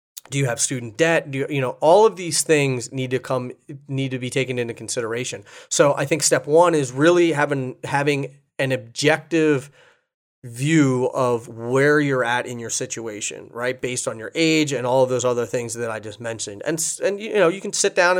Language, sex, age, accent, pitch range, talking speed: English, male, 30-49, American, 125-155 Hz, 210 wpm